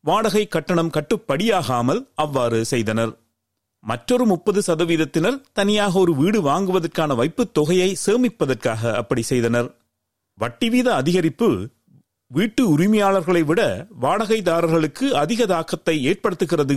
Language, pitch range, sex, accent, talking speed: Tamil, 150-220 Hz, male, native, 95 wpm